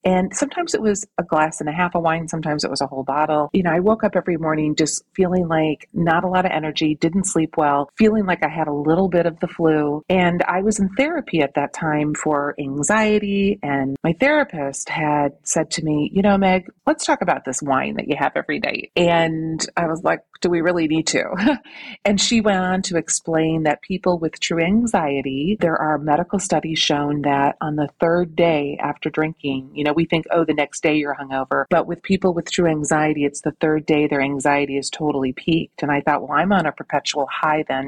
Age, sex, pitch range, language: 30-49, female, 150-180 Hz, English